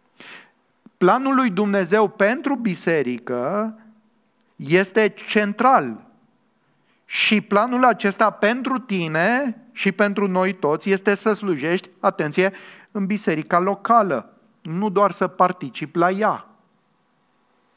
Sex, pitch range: male, 175-220 Hz